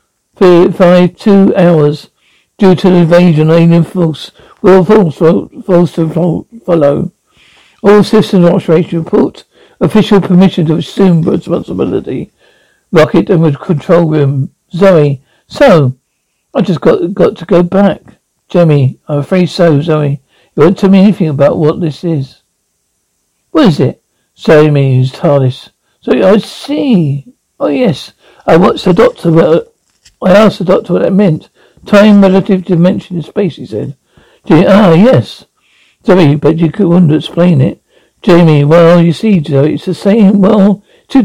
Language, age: English, 60-79